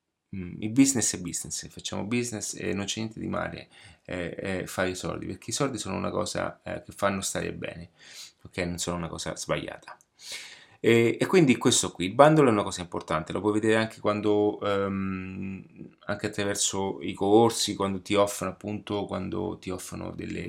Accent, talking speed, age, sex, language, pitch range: native, 185 wpm, 30-49, male, Italian, 95-110 Hz